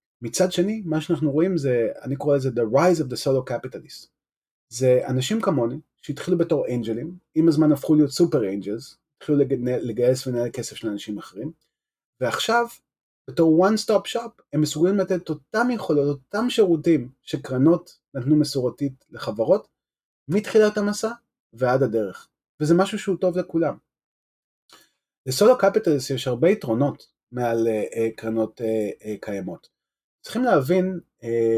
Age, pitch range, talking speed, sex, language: 30-49, 120-170 Hz, 145 wpm, male, Hebrew